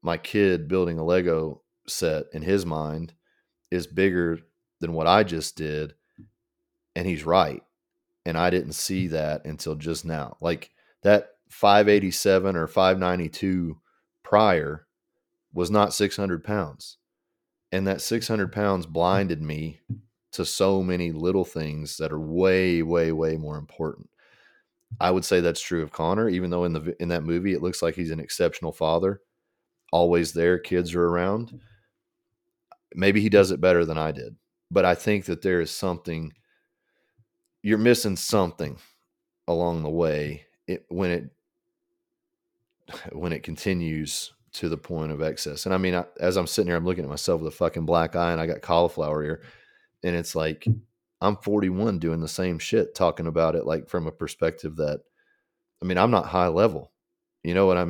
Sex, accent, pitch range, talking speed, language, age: male, American, 80-105 Hz, 170 wpm, English, 30-49